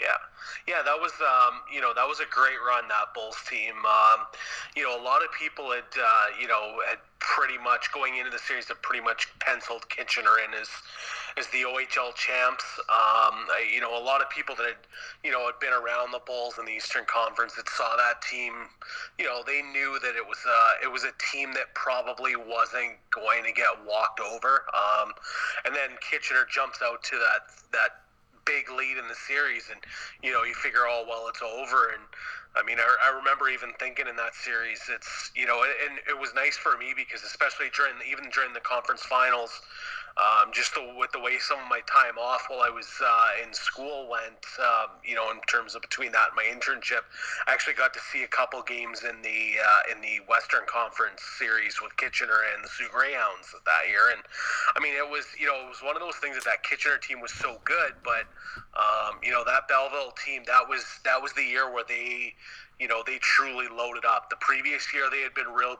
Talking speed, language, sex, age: 225 wpm, English, male, 30-49